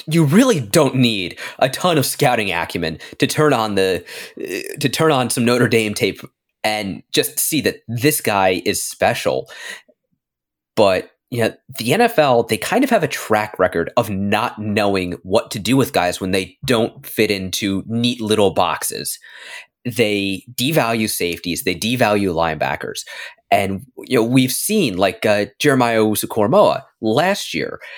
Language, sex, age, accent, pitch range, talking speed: English, male, 30-49, American, 100-140 Hz, 155 wpm